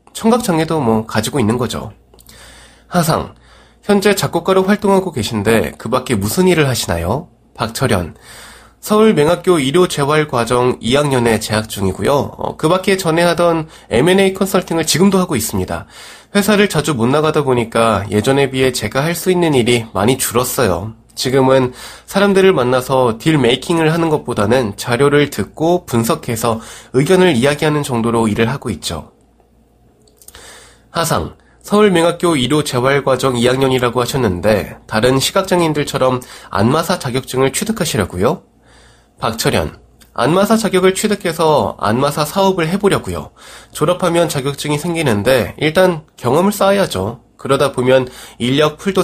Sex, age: male, 20-39